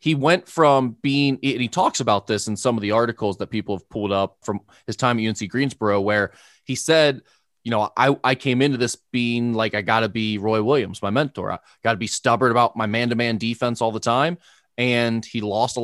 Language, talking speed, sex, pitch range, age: English, 230 wpm, male, 115-150 Hz, 20-39